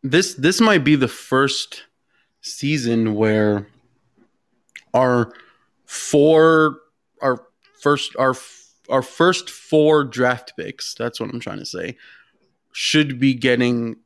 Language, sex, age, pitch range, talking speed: English, male, 20-39, 115-135 Hz, 115 wpm